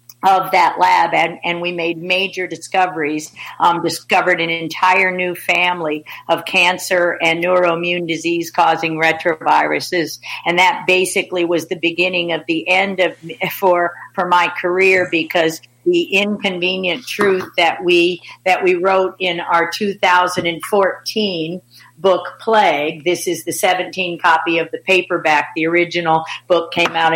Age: 50-69